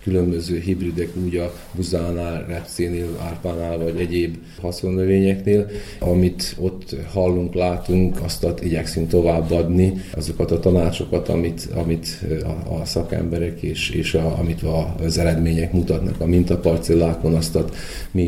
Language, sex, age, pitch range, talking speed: Hungarian, male, 30-49, 85-95 Hz, 120 wpm